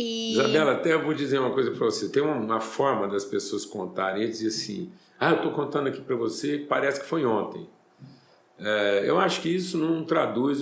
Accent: Brazilian